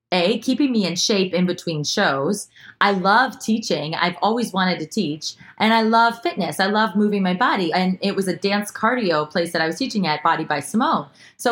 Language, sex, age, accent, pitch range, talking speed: English, female, 20-39, American, 170-225 Hz, 215 wpm